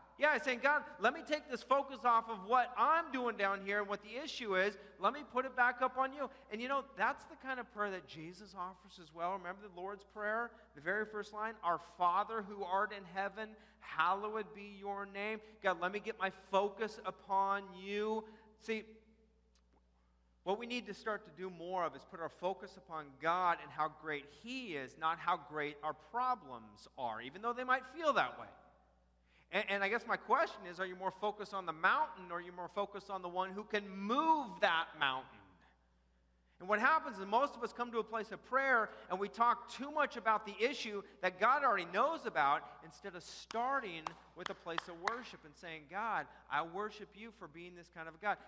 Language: English